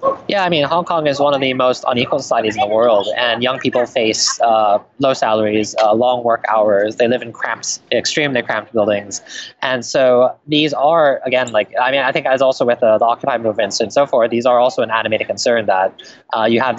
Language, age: English, 20-39